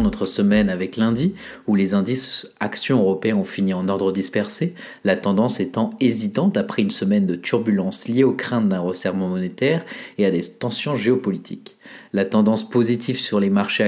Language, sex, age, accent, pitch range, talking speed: French, male, 30-49, French, 100-120 Hz, 175 wpm